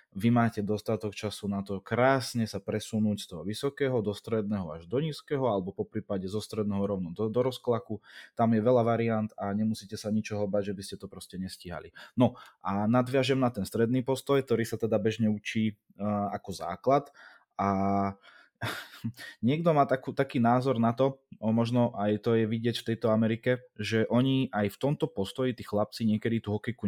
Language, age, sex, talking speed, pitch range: Czech, 20-39, male, 185 wpm, 105-125 Hz